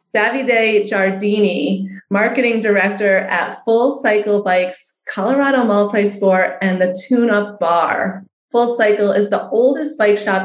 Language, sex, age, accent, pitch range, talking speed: English, female, 30-49, American, 185-235 Hz, 120 wpm